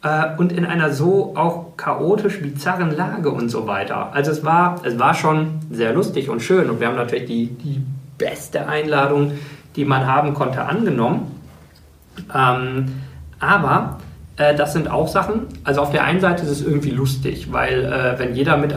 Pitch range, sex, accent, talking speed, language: 125-150 Hz, male, German, 175 wpm, German